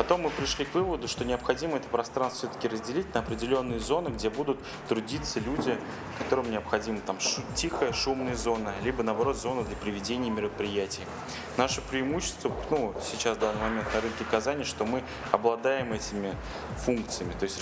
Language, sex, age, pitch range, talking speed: Russian, male, 20-39, 110-135 Hz, 160 wpm